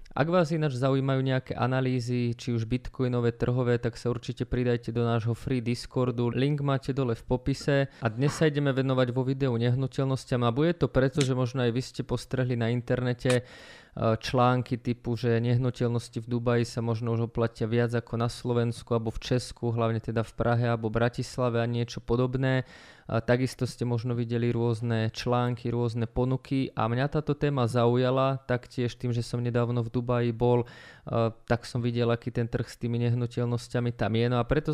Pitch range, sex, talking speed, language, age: 120-125 Hz, male, 180 wpm, Slovak, 20-39